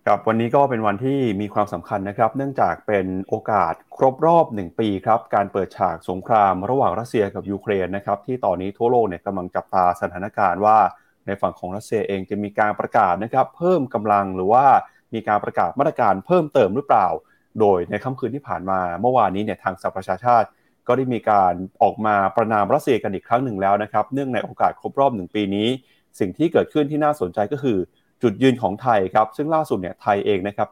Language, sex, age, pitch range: Thai, male, 30-49, 100-130 Hz